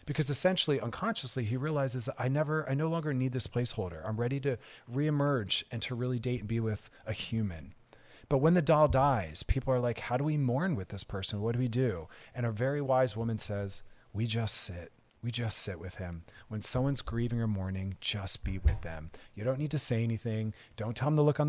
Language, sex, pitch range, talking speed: English, male, 100-130 Hz, 225 wpm